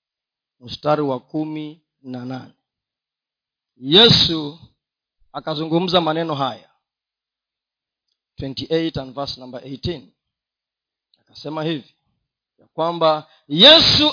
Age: 40-59